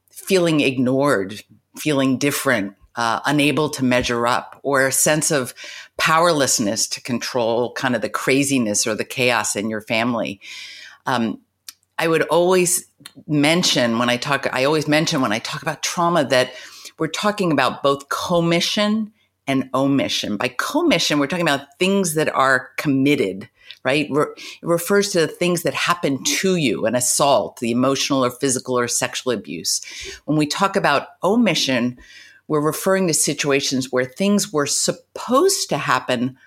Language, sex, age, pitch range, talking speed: English, female, 50-69, 130-165 Hz, 155 wpm